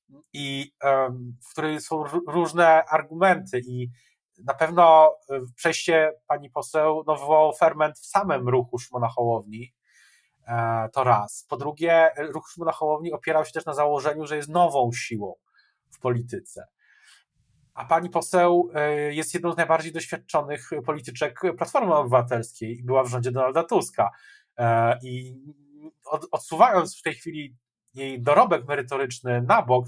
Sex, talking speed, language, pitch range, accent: male, 125 wpm, Polish, 130-160 Hz, native